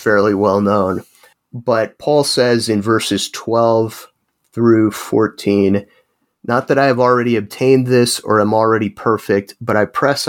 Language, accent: English, American